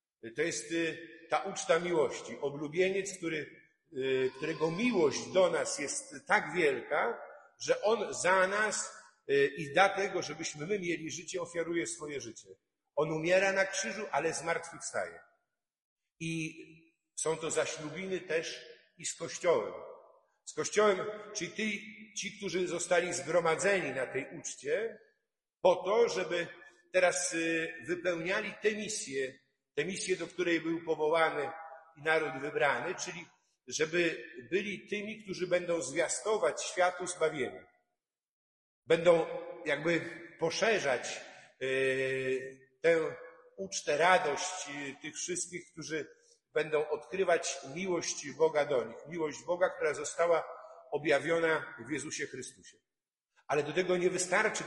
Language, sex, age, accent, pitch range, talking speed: Polish, male, 50-69, native, 160-195 Hz, 115 wpm